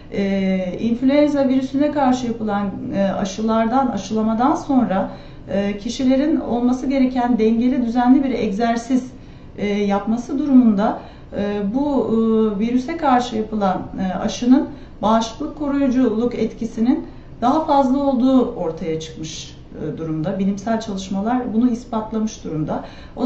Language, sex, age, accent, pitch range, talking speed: Turkish, female, 40-59, native, 215-265 Hz, 115 wpm